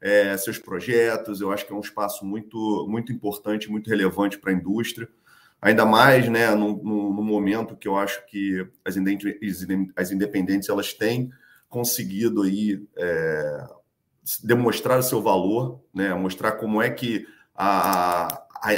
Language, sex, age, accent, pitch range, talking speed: Portuguese, male, 40-59, Brazilian, 100-120 Hz, 155 wpm